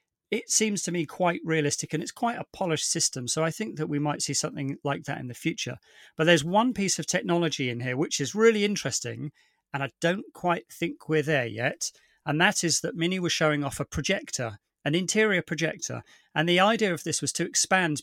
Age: 40-59